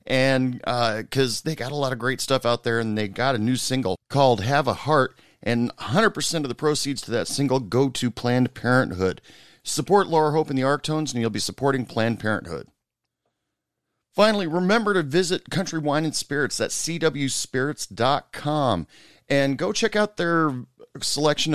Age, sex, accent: 40-59, male, American